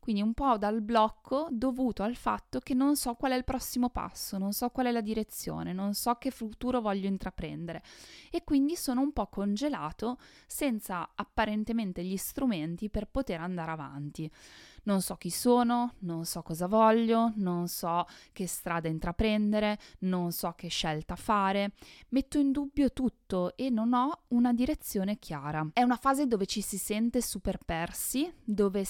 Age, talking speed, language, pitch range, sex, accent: 20-39, 165 wpm, Italian, 180-235 Hz, female, native